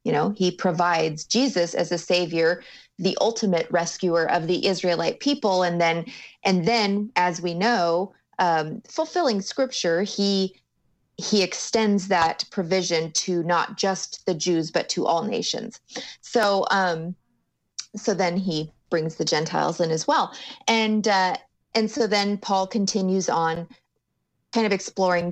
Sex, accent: female, American